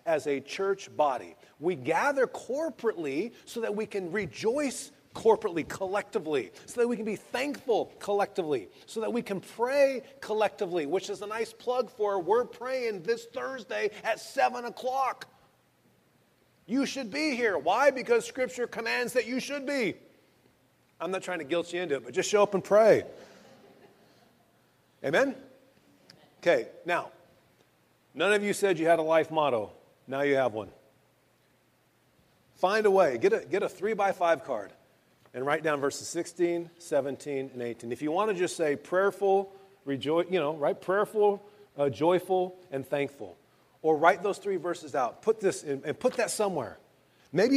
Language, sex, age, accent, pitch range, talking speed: English, male, 30-49, American, 170-240 Hz, 165 wpm